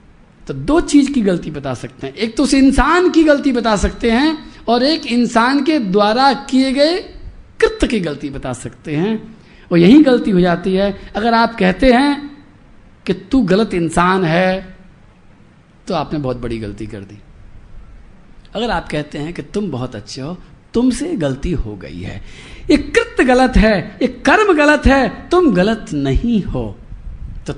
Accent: native